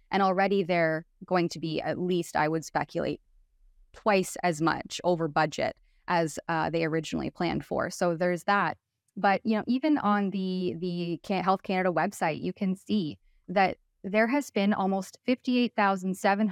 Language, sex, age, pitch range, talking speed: English, female, 20-39, 175-205 Hz, 170 wpm